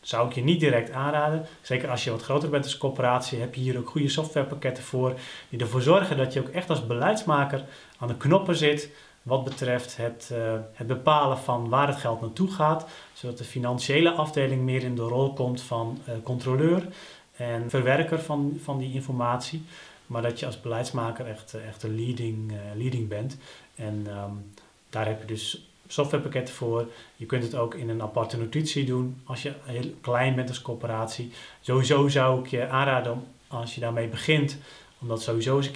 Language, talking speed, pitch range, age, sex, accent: Dutch, 195 wpm, 115-140 Hz, 30-49, male, Dutch